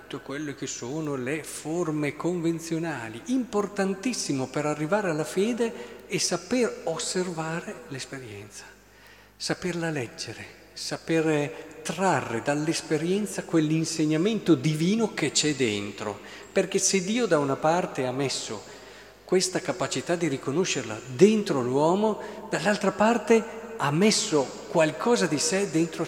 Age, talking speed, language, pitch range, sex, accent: 50-69, 110 wpm, Italian, 140-195 Hz, male, native